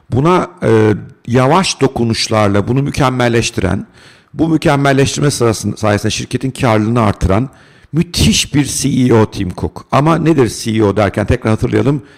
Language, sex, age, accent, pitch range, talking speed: Turkish, male, 50-69, native, 105-135 Hz, 115 wpm